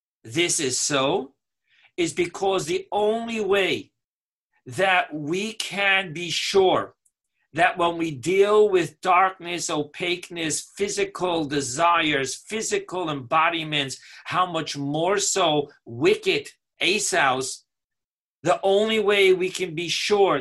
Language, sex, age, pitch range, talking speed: English, male, 50-69, 160-205 Hz, 110 wpm